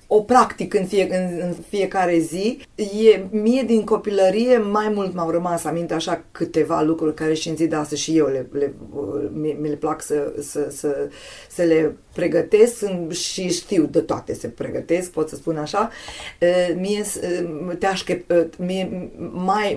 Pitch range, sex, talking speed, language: 155-195 Hz, female, 165 wpm, Romanian